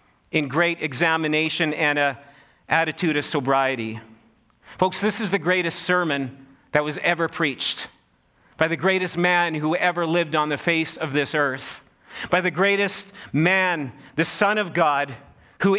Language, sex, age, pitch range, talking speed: English, male, 40-59, 180-220 Hz, 150 wpm